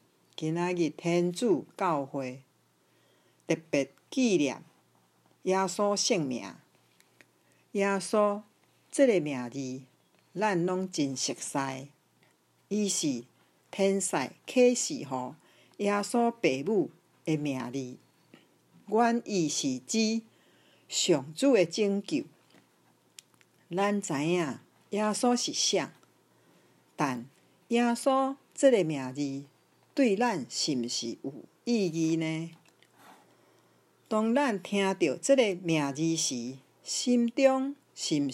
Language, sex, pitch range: Chinese, female, 145-210 Hz